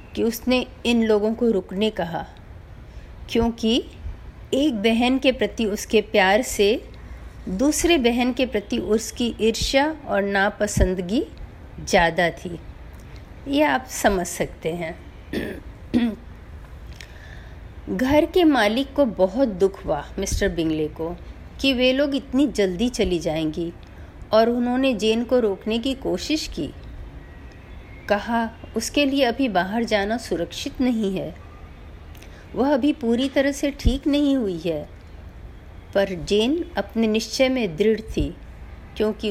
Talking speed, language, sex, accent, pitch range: 125 wpm, Hindi, female, native, 190-255 Hz